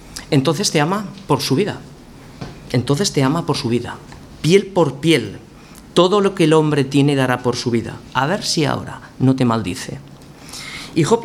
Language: Spanish